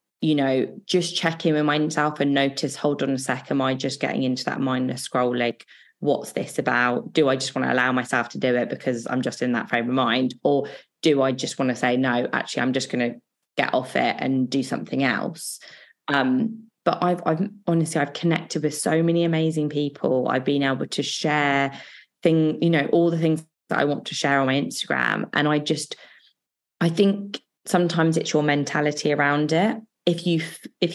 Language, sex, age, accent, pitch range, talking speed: English, female, 20-39, British, 135-160 Hz, 210 wpm